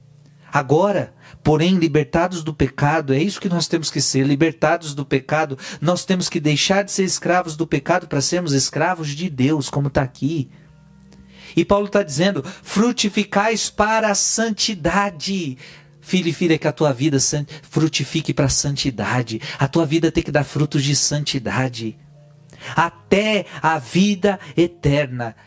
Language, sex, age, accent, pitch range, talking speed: Portuguese, male, 40-59, Brazilian, 130-160 Hz, 155 wpm